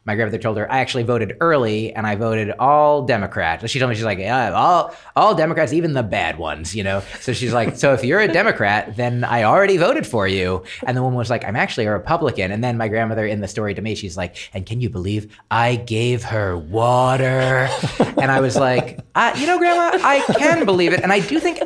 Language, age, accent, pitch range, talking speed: English, 30-49, American, 110-150 Hz, 235 wpm